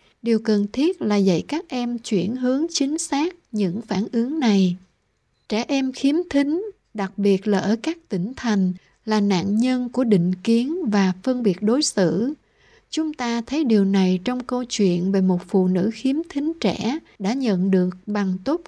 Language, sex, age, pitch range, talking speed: Vietnamese, female, 60-79, 195-255 Hz, 185 wpm